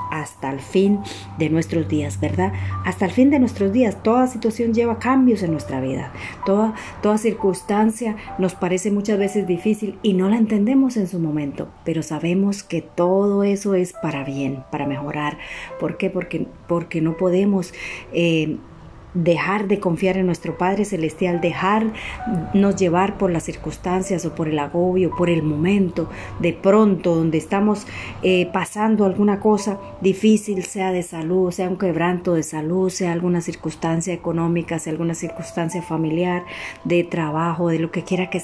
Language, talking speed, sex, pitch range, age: Spanish, 160 wpm, female, 165-200 Hz, 40-59